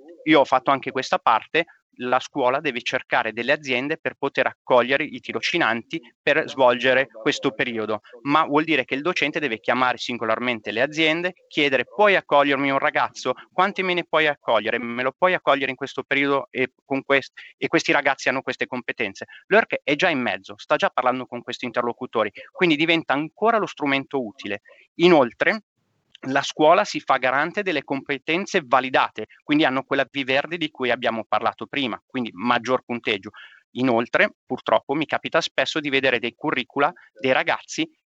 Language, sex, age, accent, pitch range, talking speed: Italian, male, 30-49, native, 125-160 Hz, 170 wpm